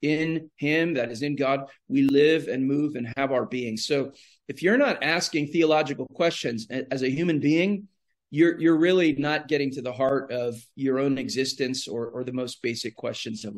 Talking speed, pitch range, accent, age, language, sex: 195 wpm, 135-170 Hz, American, 40-59, English, male